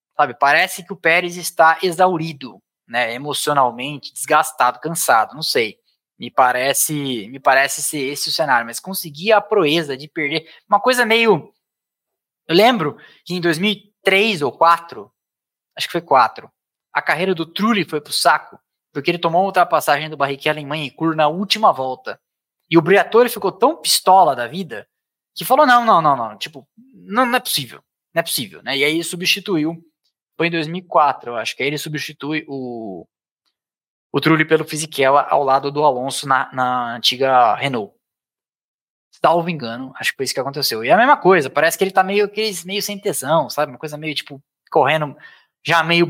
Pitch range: 145-190 Hz